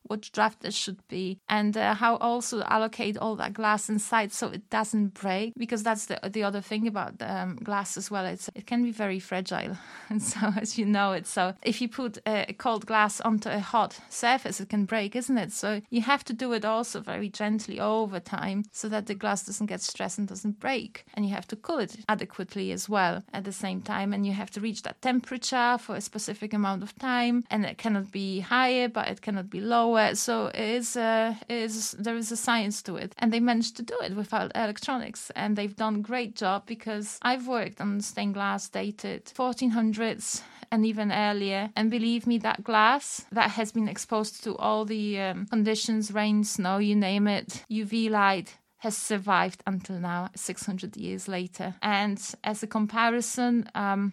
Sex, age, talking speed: female, 30-49, 200 wpm